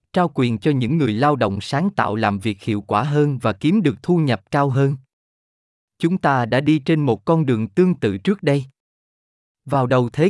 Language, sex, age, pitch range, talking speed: Vietnamese, male, 20-39, 110-160 Hz, 210 wpm